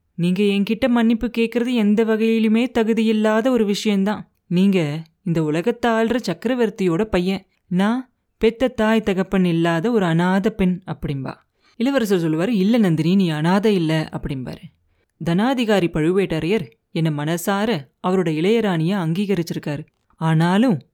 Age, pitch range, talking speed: 20-39, 165-220 Hz, 115 wpm